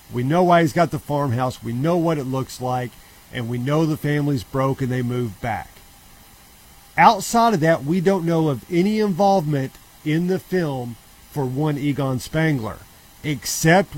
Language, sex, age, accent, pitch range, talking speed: English, male, 40-59, American, 130-165 Hz, 170 wpm